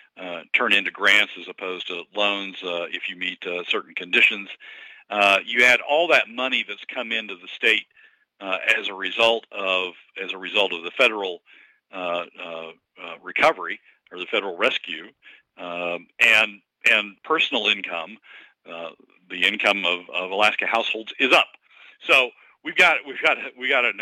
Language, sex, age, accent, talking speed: English, male, 50-69, American, 165 wpm